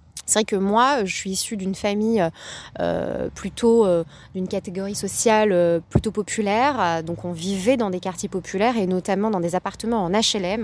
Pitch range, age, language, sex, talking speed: 175-225 Hz, 20-39, French, female, 180 wpm